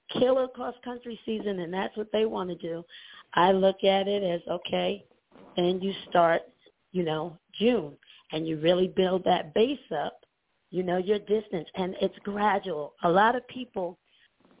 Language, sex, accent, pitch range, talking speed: English, female, American, 175-215 Hz, 165 wpm